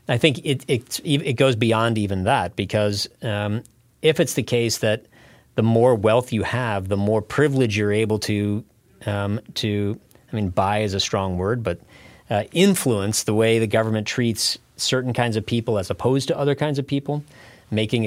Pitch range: 100-120 Hz